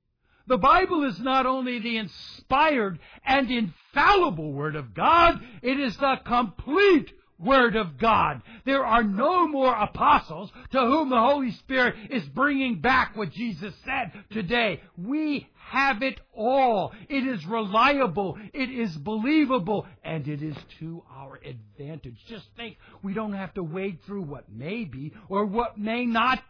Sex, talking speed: male, 150 wpm